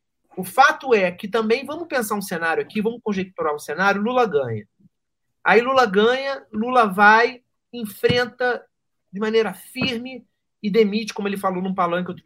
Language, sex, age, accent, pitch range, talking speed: Portuguese, male, 40-59, Brazilian, 165-230 Hz, 160 wpm